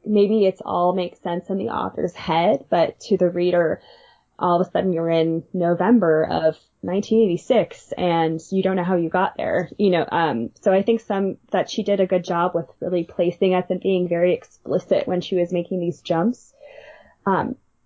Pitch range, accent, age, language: 175-210 Hz, American, 10-29, English